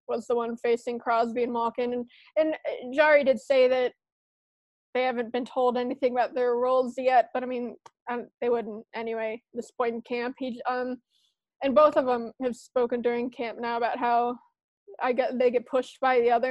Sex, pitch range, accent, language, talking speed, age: female, 245-270 Hz, American, English, 195 wpm, 20-39